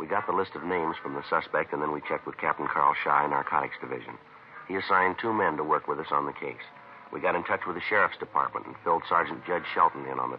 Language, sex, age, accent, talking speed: English, male, 60-79, American, 265 wpm